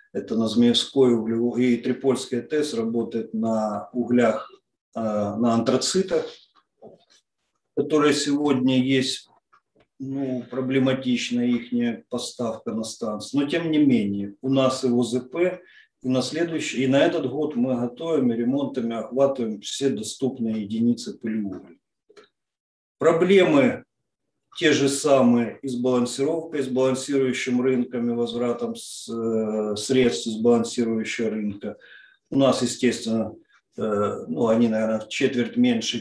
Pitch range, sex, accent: 115-140 Hz, male, native